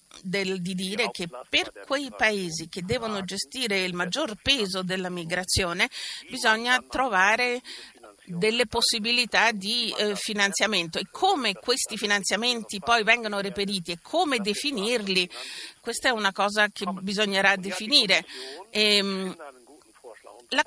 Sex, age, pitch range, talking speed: female, 50-69, 200-245 Hz, 120 wpm